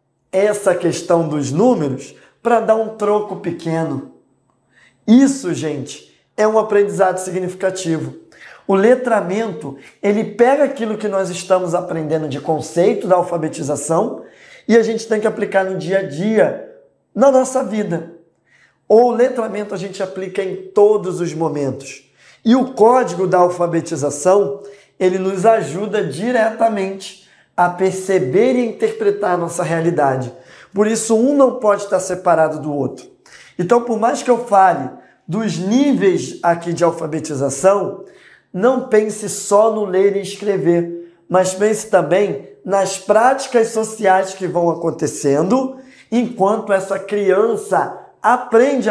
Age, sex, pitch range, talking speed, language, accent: 20-39, male, 170-220 Hz, 130 wpm, Portuguese, Brazilian